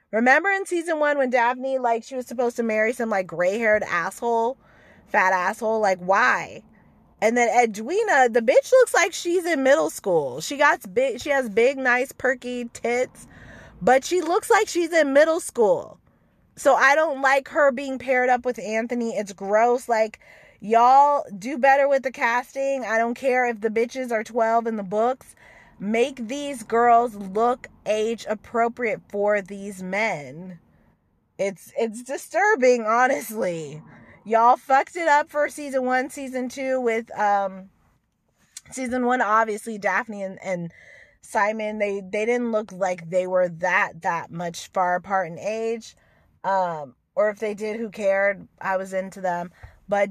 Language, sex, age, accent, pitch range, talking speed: English, female, 20-39, American, 200-265 Hz, 160 wpm